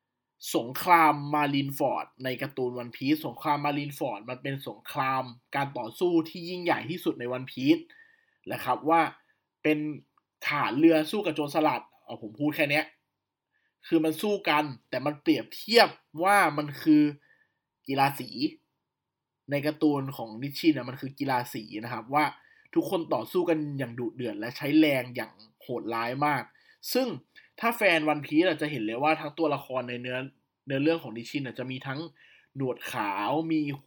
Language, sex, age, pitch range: Thai, male, 20-39, 130-165 Hz